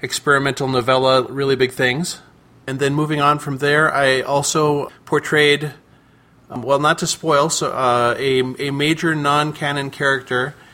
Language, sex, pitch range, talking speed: English, male, 115-135 Hz, 145 wpm